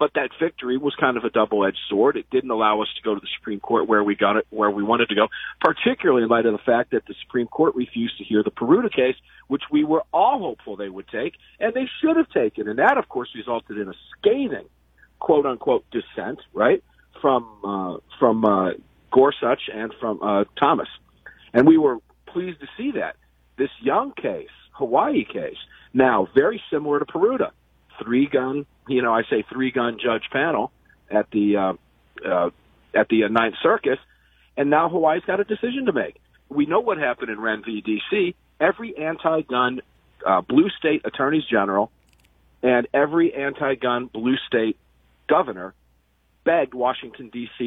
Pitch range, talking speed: 105-155 Hz, 180 wpm